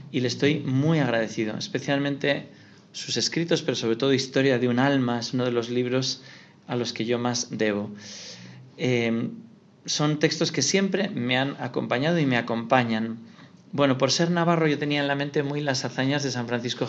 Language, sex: Spanish, male